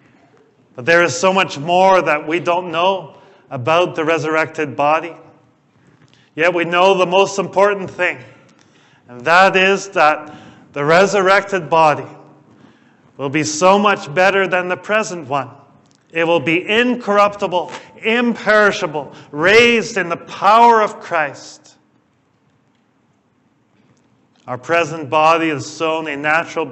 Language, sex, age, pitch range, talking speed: English, male, 40-59, 150-190 Hz, 125 wpm